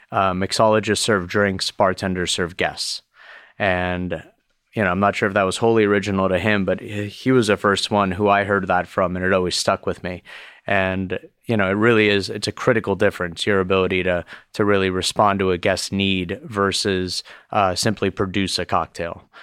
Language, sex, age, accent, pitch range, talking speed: English, male, 30-49, American, 90-105 Hz, 195 wpm